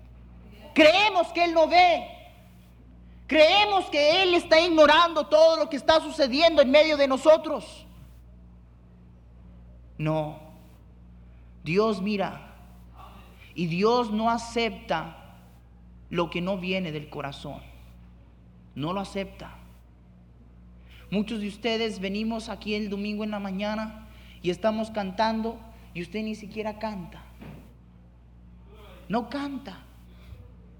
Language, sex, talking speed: Spanish, male, 105 wpm